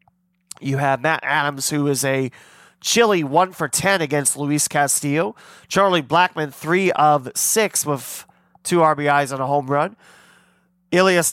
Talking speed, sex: 120 wpm, male